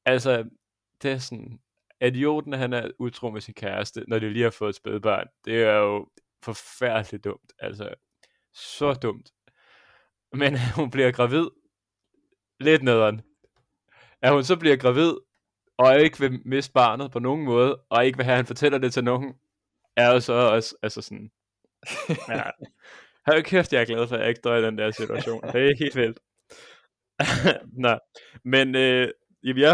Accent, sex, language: native, male, Danish